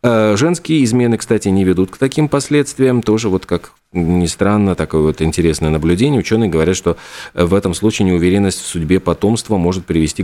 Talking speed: 170 wpm